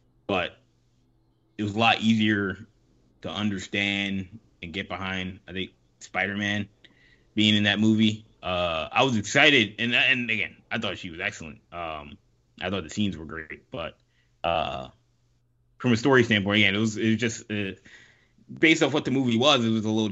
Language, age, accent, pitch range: English, 20-39, American, 100-120 Hz